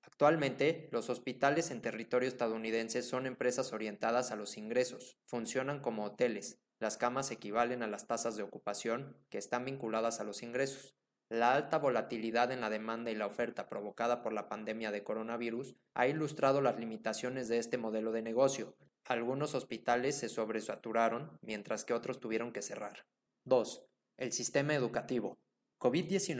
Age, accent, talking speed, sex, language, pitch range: 20-39, Mexican, 155 wpm, male, Spanish, 110-130 Hz